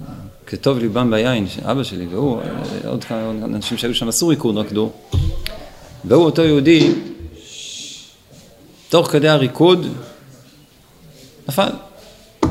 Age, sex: 40-59, male